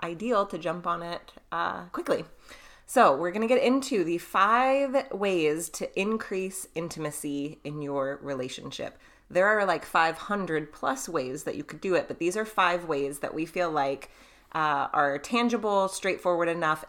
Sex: female